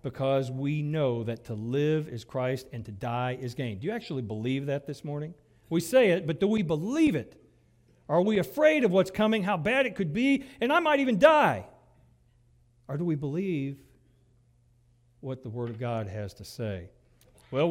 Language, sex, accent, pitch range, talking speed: English, male, American, 125-185 Hz, 195 wpm